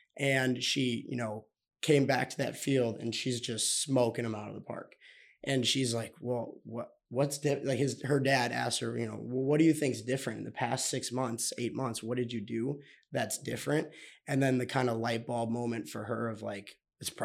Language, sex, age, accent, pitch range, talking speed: English, male, 20-39, American, 120-140 Hz, 230 wpm